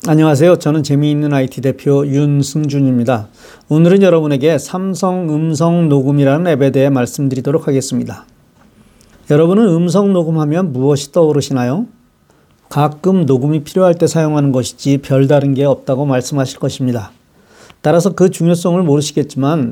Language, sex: Korean, male